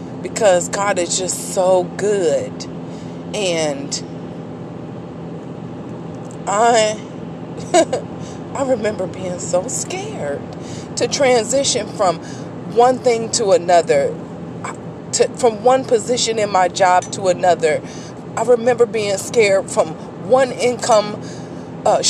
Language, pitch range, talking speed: English, 175-280 Hz, 100 wpm